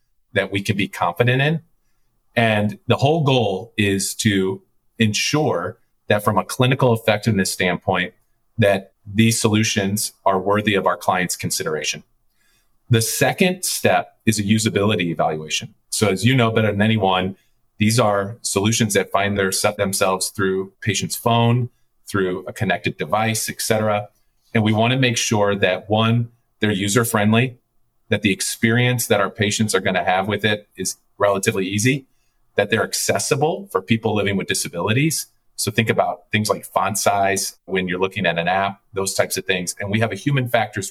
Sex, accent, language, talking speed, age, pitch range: male, American, English, 165 wpm, 40-59, 95-115 Hz